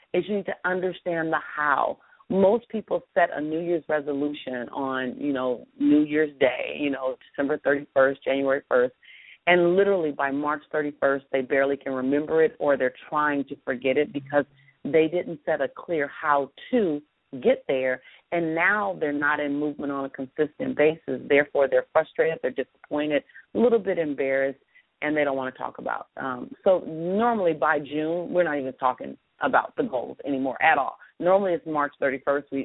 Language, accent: English, American